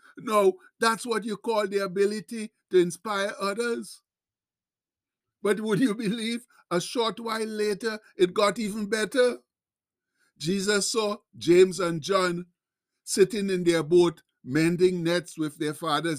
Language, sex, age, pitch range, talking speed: English, male, 60-79, 180-215 Hz, 135 wpm